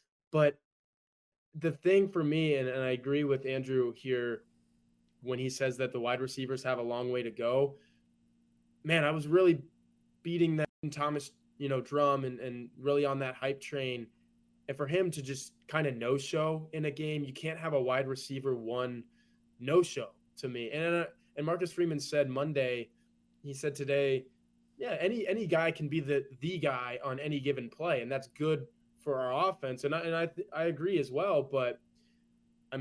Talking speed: 185 wpm